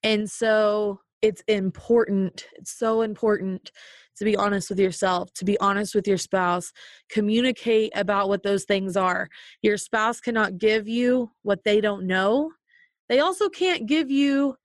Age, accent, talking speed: 20-39, American, 155 wpm